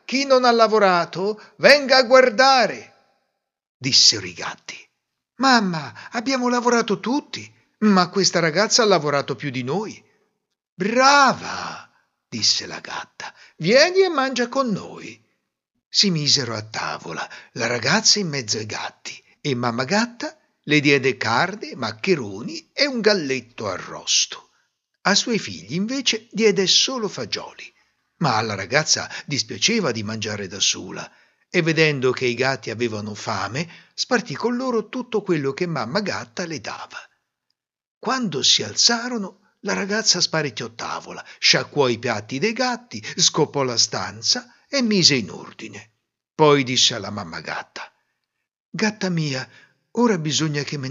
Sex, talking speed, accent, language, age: male, 135 wpm, native, Italian, 60-79